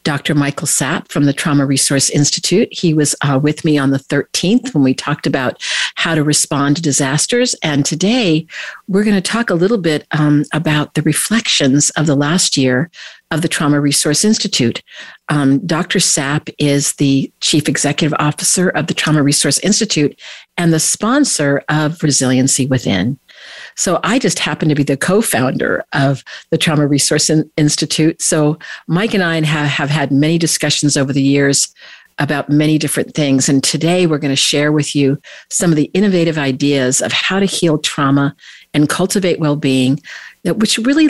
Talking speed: 170 wpm